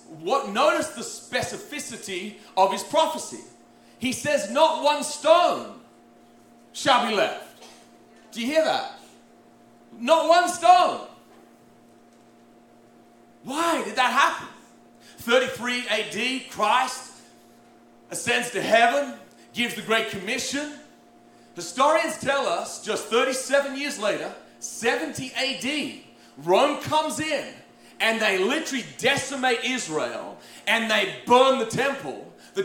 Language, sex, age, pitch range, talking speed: English, male, 40-59, 220-295 Hz, 110 wpm